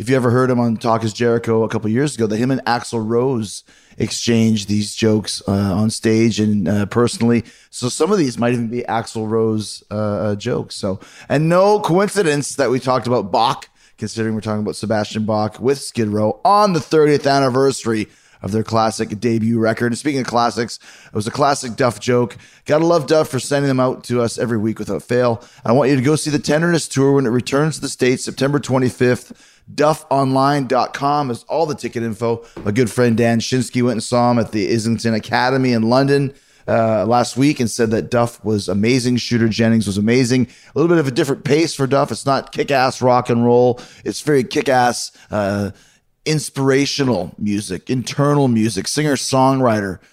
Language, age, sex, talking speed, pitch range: English, 30-49, male, 195 wpm, 110-135 Hz